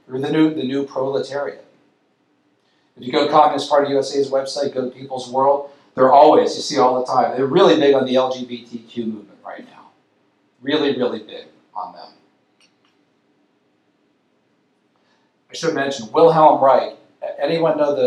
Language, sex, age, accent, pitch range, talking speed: English, male, 40-59, American, 125-145 Hz, 155 wpm